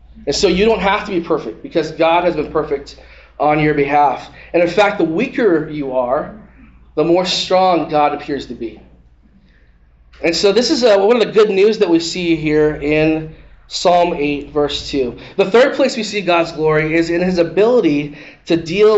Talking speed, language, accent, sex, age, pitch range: 195 wpm, English, American, male, 20-39, 145-185 Hz